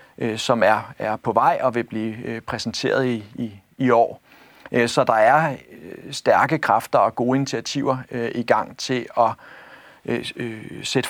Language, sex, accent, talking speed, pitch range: Danish, male, native, 125 wpm, 120-150 Hz